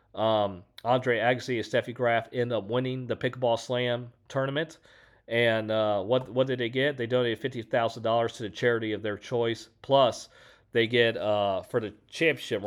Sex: male